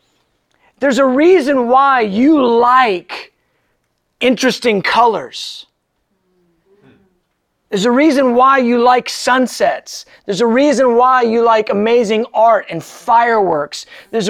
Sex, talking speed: male, 110 wpm